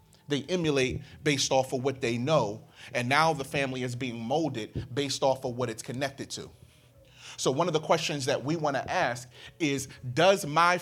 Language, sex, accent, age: English, male, American, 30-49